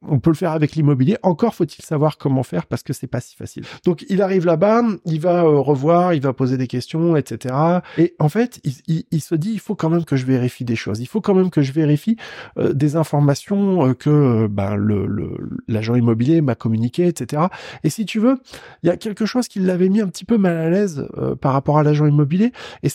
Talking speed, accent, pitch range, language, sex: 240 wpm, French, 140-205 Hz, French, male